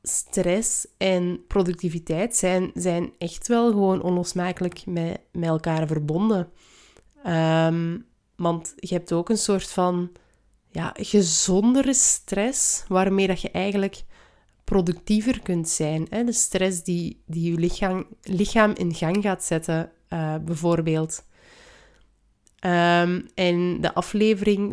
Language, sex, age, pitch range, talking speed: Dutch, female, 20-39, 170-200 Hz, 105 wpm